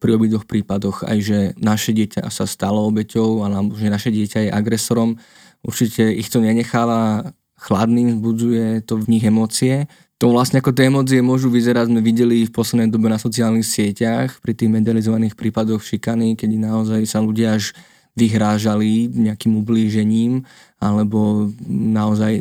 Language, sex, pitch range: Slovak, male, 110-120 Hz